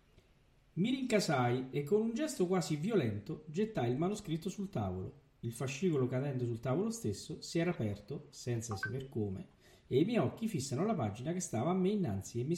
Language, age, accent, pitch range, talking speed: Italian, 50-69, native, 115-185 Hz, 185 wpm